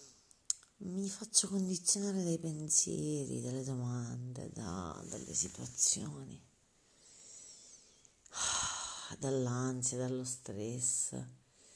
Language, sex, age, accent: Italian, female, 40-59, native